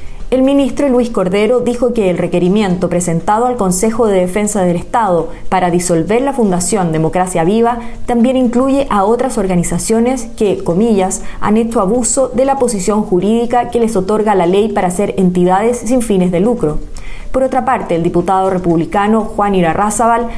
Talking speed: 160 wpm